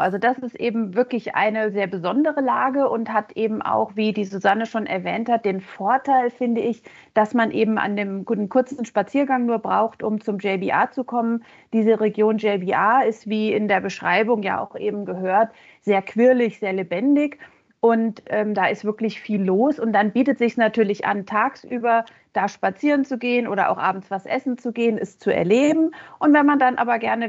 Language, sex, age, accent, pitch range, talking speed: German, female, 40-59, German, 200-235 Hz, 195 wpm